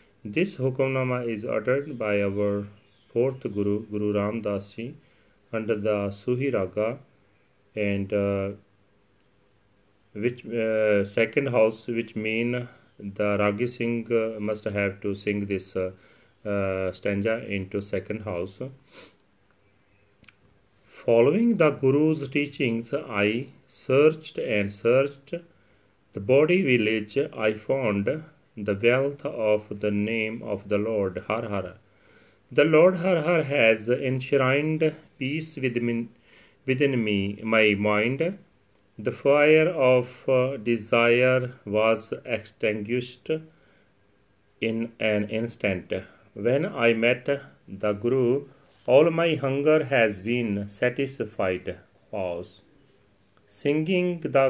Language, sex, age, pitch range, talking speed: Punjabi, male, 40-59, 100-135 Hz, 105 wpm